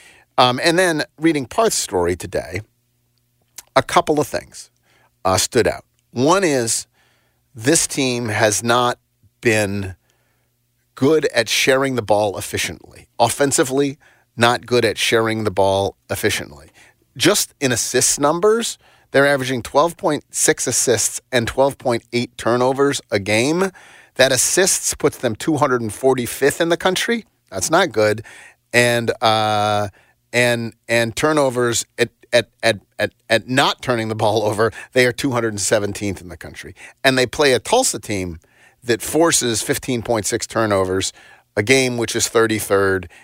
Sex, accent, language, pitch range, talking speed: male, American, English, 110-135 Hz, 130 wpm